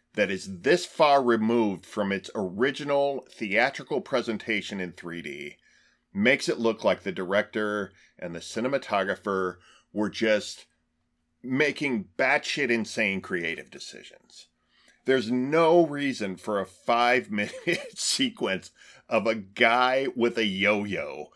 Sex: male